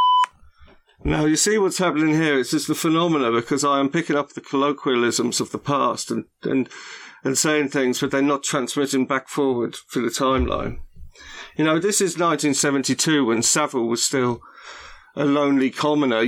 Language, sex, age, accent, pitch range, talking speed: English, male, 40-59, British, 120-155 Hz, 175 wpm